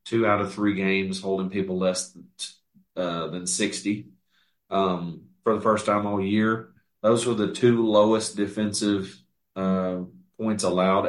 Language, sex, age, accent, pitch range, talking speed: English, male, 40-59, American, 95-110 Hz, 145 wpm